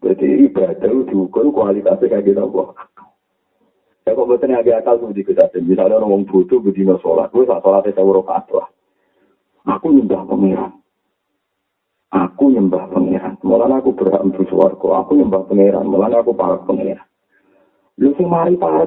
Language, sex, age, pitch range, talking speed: Malay, male, 40-59, 95-120 Hz, 135 wpm